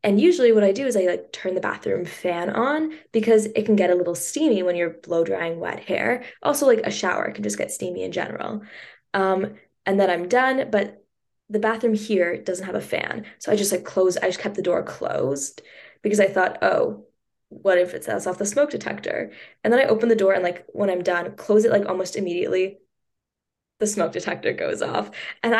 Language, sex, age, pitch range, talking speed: English, female, 10-29, 185-230 Hz, 220 wpm